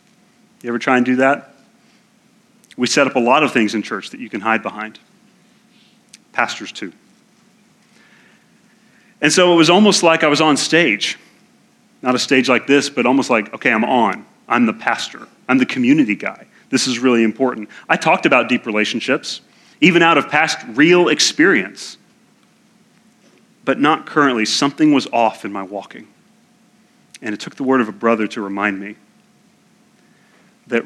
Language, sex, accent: English, male, American